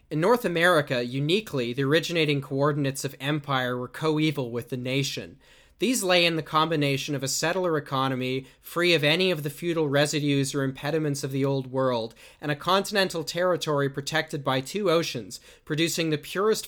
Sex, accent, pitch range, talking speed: male, American, 135-160 Hz, 170 wpm